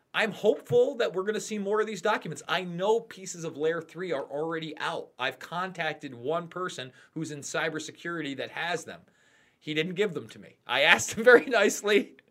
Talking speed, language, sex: 200 wpm, English, male